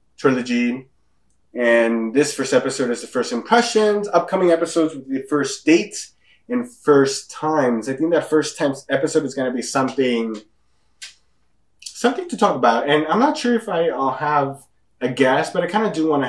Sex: male